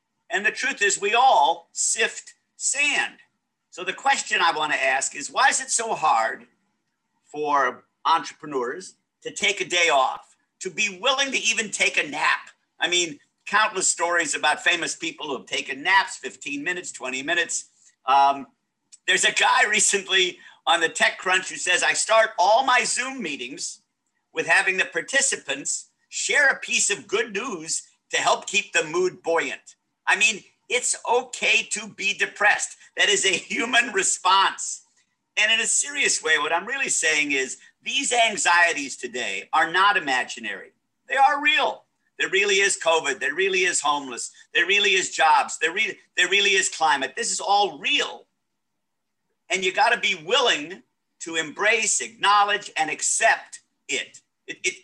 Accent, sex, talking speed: American, male, 160 wpm